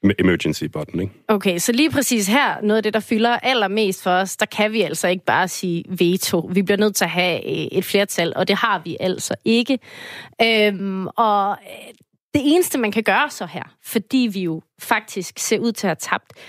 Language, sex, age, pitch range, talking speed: Danish, female, 30-49, 190-245 Hz, 200 wpm